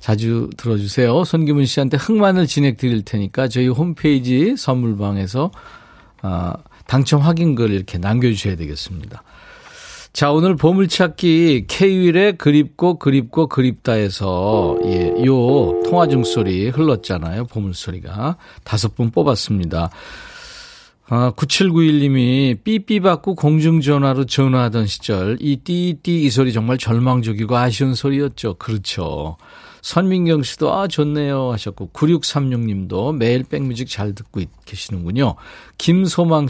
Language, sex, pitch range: Korean, male, 105-155 Hz